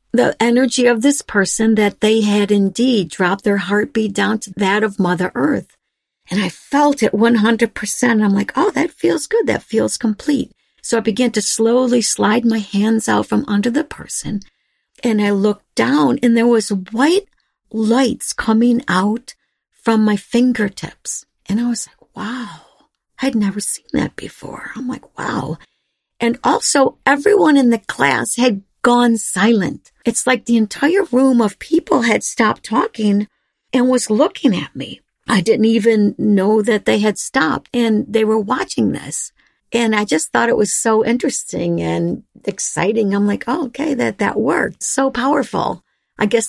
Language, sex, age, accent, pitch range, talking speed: English, female, 50-69, American, 205-250 Hz, 170 wpm